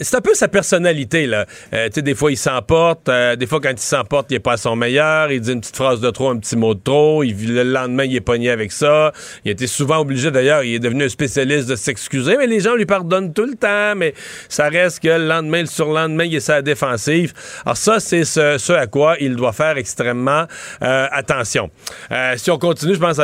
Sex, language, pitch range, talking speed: male, French, 125-160 Hz, 250 wpm